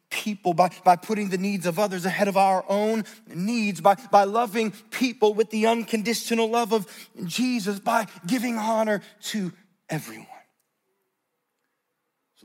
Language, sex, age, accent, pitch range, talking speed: English, male, 30-49, American, 170-215 Hz, 140 wpm